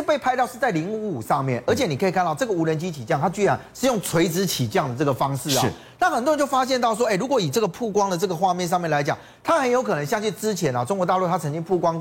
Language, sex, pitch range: Chinese, male, 140-215 Hz